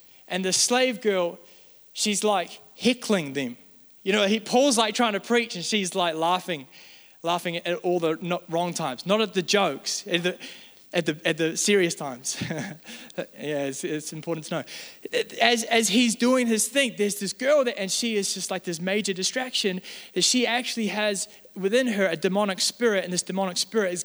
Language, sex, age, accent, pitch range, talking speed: English, male, 20-39, Australian, 175-225 Hz, 190 wpm